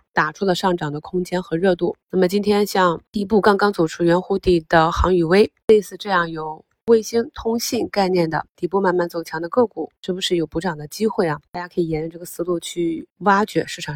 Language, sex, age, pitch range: Chinese, female, 20-39, 170-205 Hz